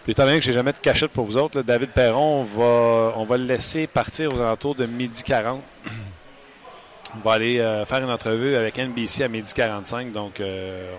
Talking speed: 205 wpm